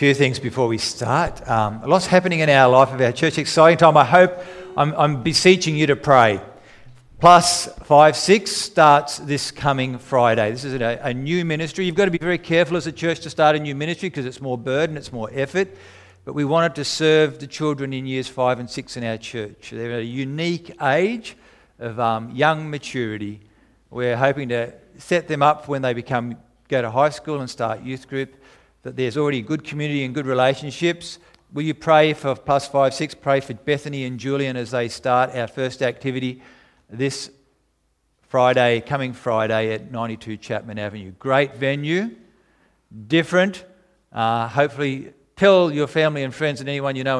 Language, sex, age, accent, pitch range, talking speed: English, male, 50-69, Australian, 120-155 Hz, 185 wpm